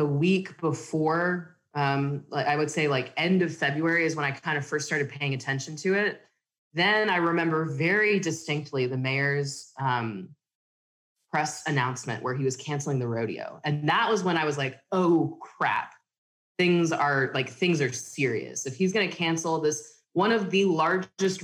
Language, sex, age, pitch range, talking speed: English, female, 20-39, 140-175 Hz, 175 wpm